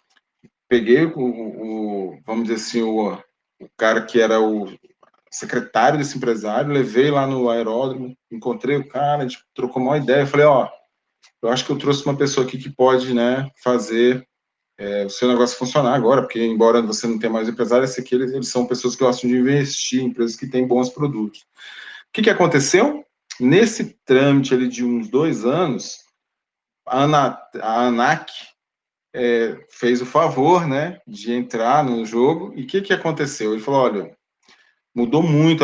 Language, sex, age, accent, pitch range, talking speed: Portuguese, male, 20-39, Brazilian, 115-140 Hz, 170 wpm